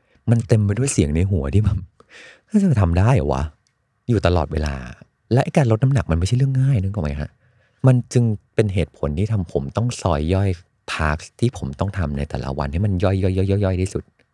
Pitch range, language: 80-110 Hz, Thai